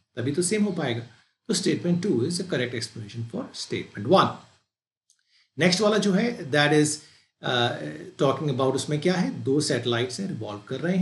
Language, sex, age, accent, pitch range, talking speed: English, male, 50-69, Indian, 130-190 Hz, 105 wpm